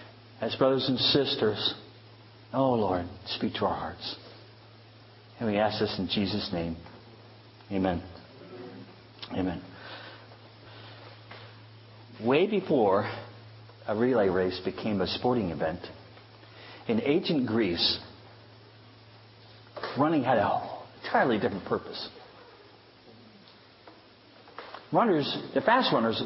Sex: male